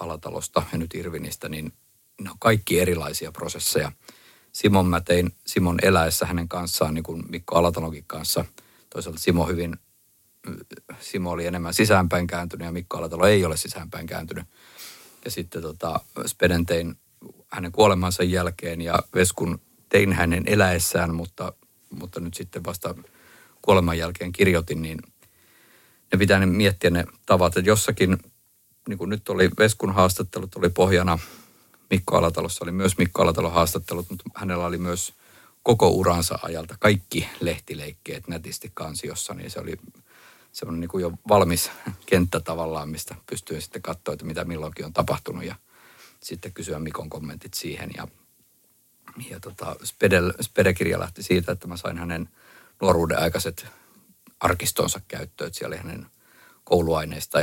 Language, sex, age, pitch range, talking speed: Finnish, male, 50-69, 85-95 Hz, 140 wpm